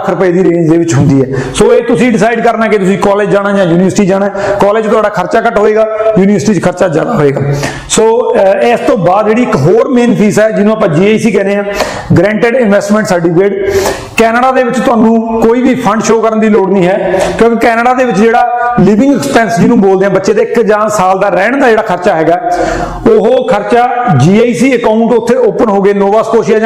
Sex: male